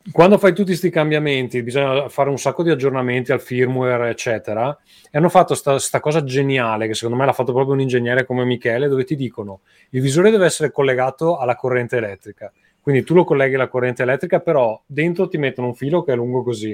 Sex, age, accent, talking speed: male, 30-49, native, 210 wpm